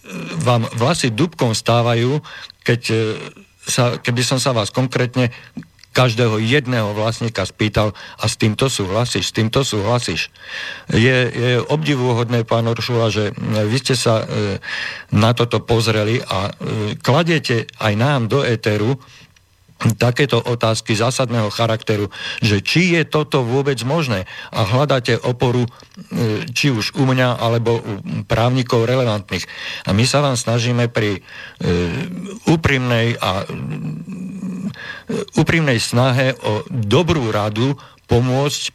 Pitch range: 110-135 Hz